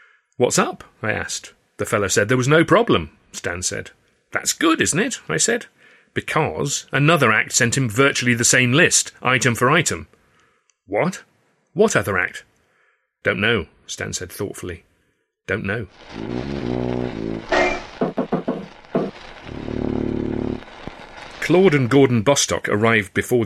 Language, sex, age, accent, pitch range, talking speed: English, male, 40-59, British, 100-125 Hz, 125 wpm